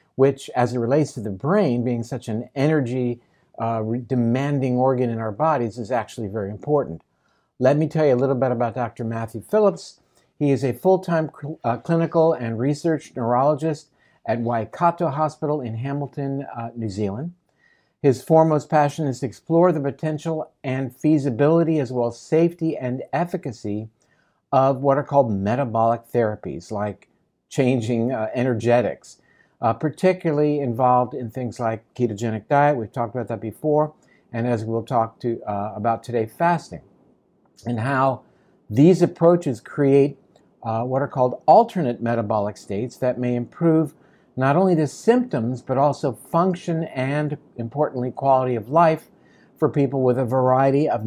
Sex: male